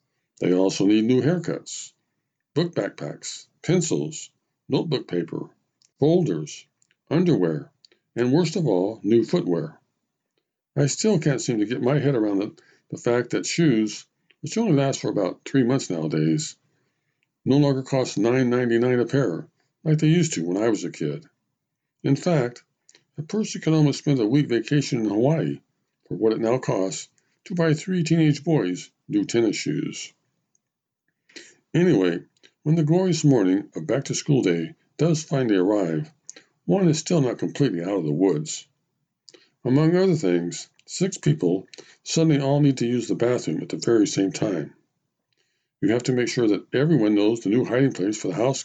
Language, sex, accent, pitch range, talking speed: English, male, American, 120-155 Hz, 165 wpm